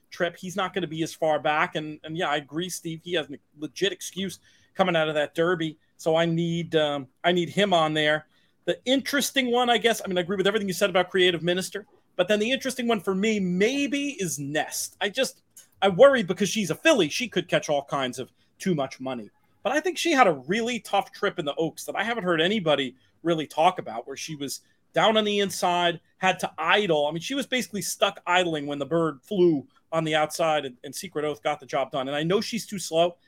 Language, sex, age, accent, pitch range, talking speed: English, male, 40-59, American, 150-200 Hz, 240 wpm